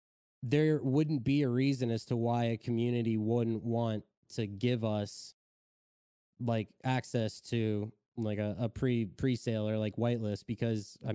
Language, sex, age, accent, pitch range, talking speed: English, male, 20-39, American, 115-125 Hz, 150 wpm